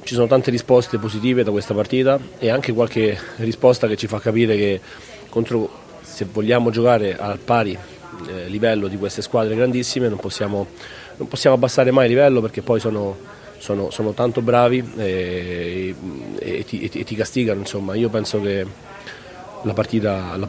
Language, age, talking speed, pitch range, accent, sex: Italian, 30-49, 145 wpm, 110-120 Hz, native, male